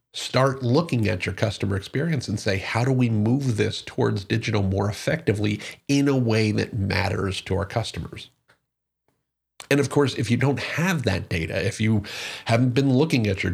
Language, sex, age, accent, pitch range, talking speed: English, male, 40-59, American, 95-125 Hz, 180 wpm